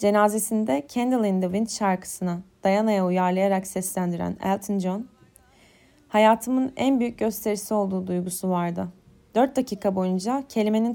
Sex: female